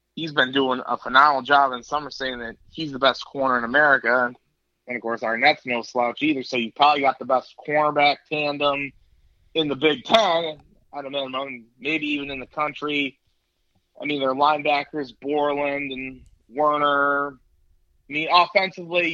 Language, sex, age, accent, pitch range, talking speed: English, male, 20-39, American, 120-145 Hz, 165 wpm